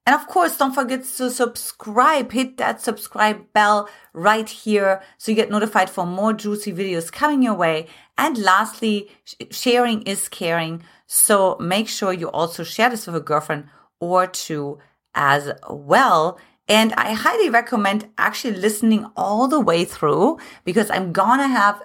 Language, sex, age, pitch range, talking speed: English, female, 30-49, 170-235 Hz, 160 wpm